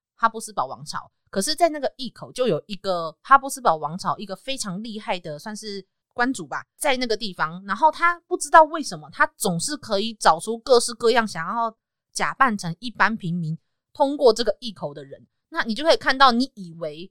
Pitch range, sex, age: 175-265 Hz, female, 20-39